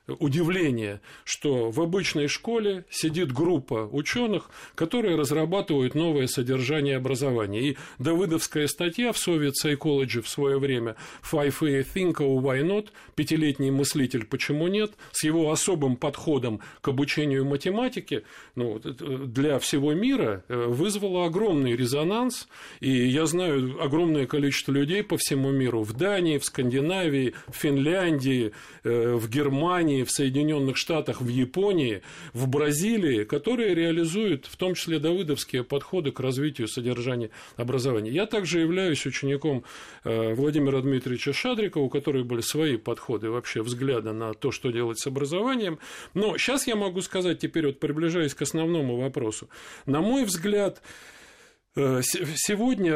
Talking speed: 125 wpm